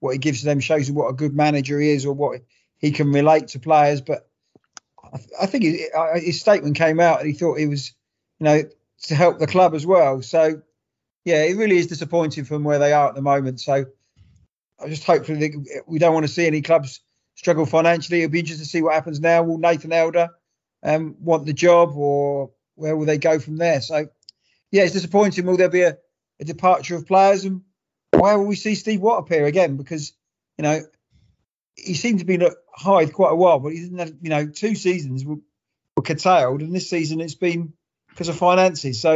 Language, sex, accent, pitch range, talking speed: English, male, British, 150-175 Hz, 225 wpm